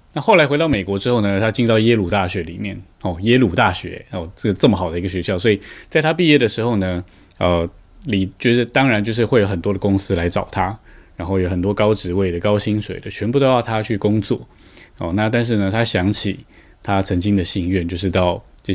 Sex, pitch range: male, 90-110 Hz